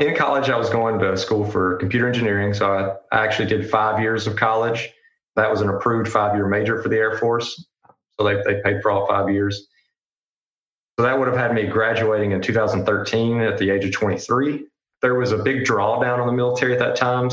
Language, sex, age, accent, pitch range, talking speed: English, male, 20-39, American, 105-125 Hz, 210 wpm